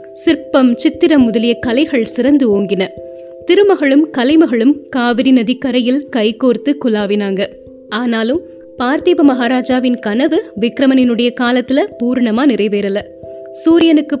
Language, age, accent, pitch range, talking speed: Tamil, 20-39, native, 220-280 Hz, 95 wpm